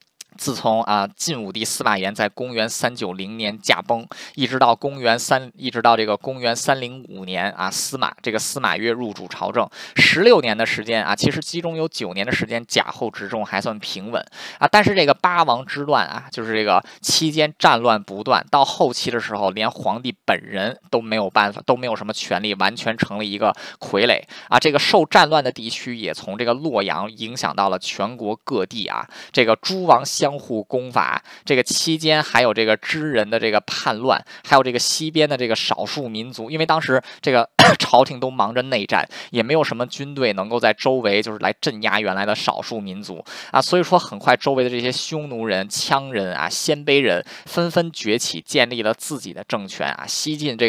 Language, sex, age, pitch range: Chinese, male, 20-39, 110-145 Hz